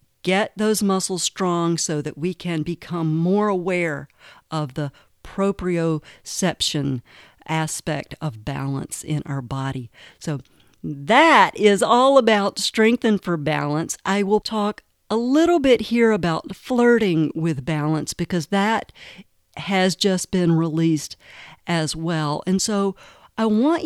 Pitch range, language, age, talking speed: 160-215 Hz, English, 50-69, 130 wpm